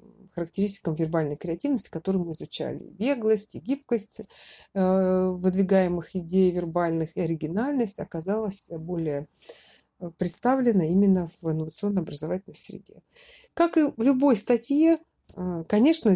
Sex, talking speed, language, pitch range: female, 105 wpm, Russian, 170-220 Hz